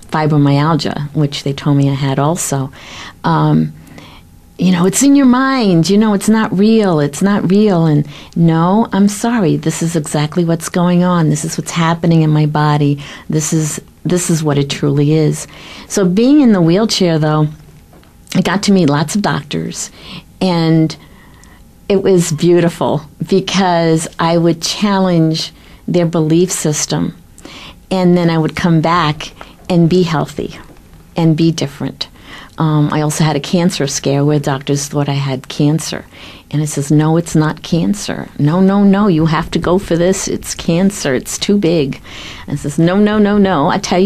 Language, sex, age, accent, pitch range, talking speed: English, female, 50-69, American, 150-185 Hz, 175 wpm